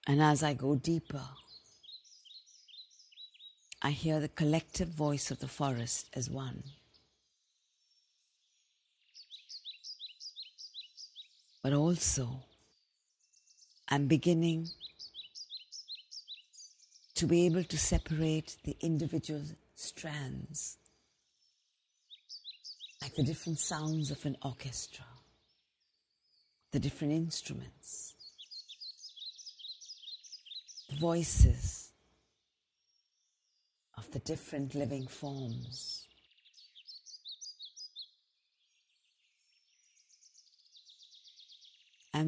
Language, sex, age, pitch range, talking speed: English, female, 50-69, 135-160 Hz, 60 wpm